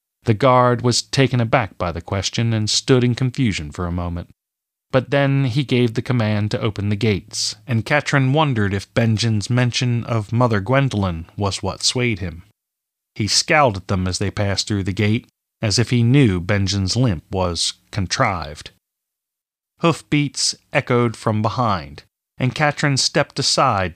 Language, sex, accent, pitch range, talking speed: English, male, American, 105-135 Hz, 160 wpm